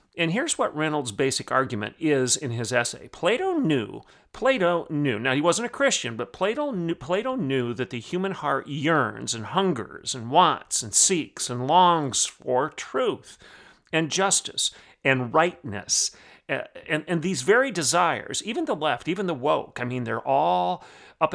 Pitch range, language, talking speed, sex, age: 130-175 Hz, English, 165 wpm, male, 40-59